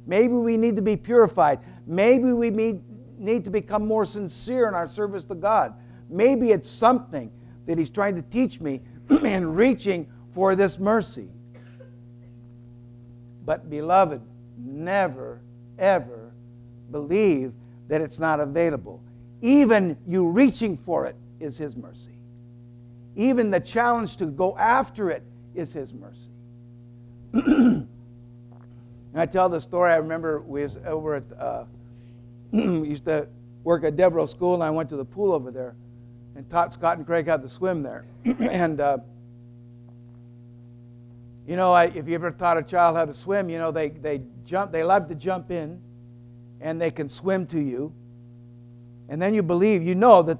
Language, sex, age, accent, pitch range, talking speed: English, male, 60-79, American, 120-185 Hz, 155 wpm